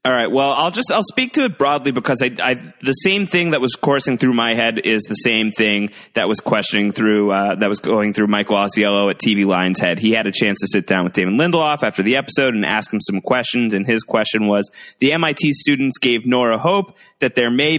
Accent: American